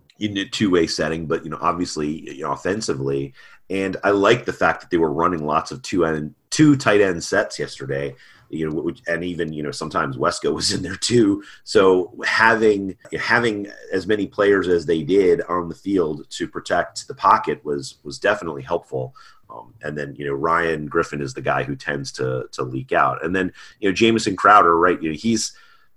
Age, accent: 30-49, American